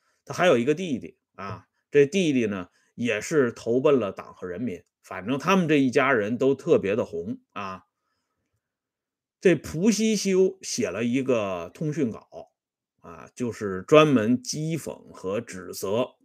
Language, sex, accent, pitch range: Swedish, male, Chinese, 130-205 Hz